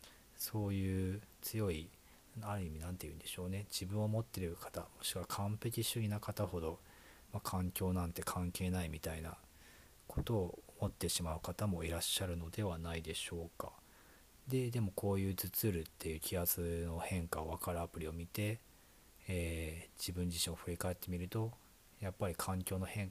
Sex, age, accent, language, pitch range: male, 40-59, native, Japanese, 85-100 Hz